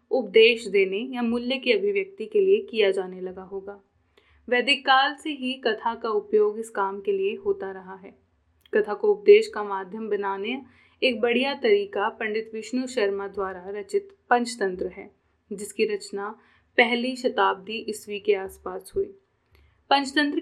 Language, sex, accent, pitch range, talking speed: Hindi, female, native, 205-305 Hz, 150 wpm